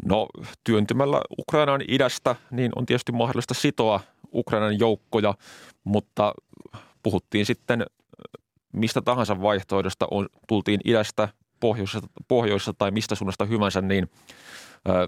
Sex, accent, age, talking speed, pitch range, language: male, native, 30-49, 105 wpm, 90-110 Hz, Finnish